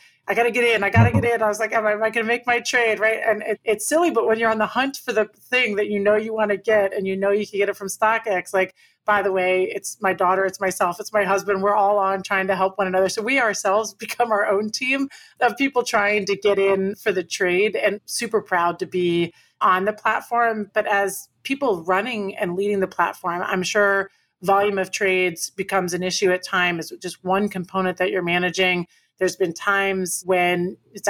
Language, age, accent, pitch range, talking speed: English, 30-49, American, 185-220 Hz, 240 wpm